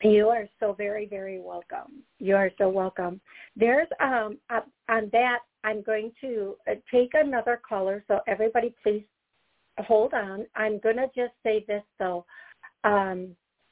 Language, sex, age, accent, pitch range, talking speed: English, female, 50-69, American, 200-235 Hz, 150 wpm